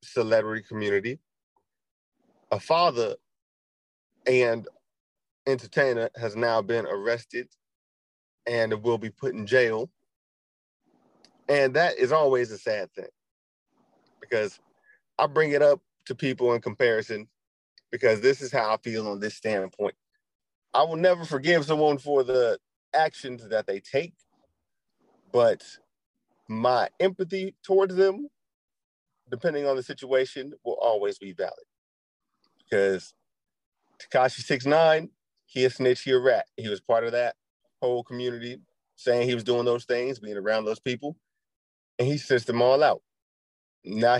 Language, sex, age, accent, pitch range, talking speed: English, male, 30-49, American, 110-150 Hz, 135 wpm